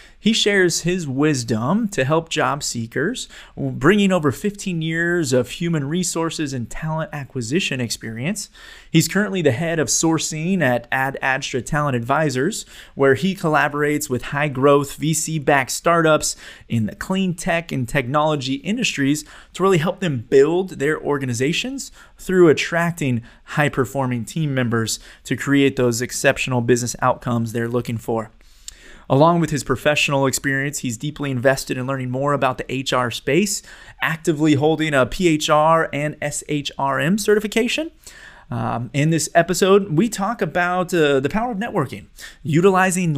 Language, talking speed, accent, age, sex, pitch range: English, 145 wpm, American, 30-49, male, 130-170 Hz